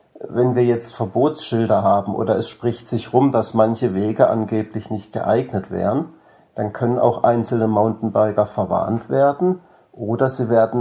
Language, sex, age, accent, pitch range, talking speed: German, male, 50-69, German, 105-120 Hz, 150 wpm